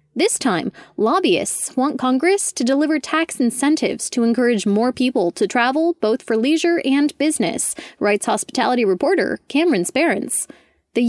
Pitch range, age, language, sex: 230-320 Hz, 20-39, English, female